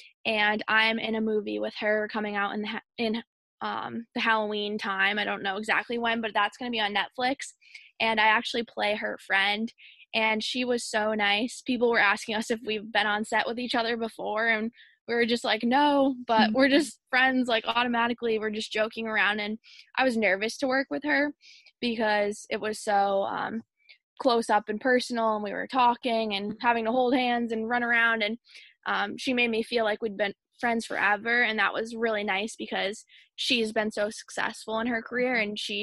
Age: 20-39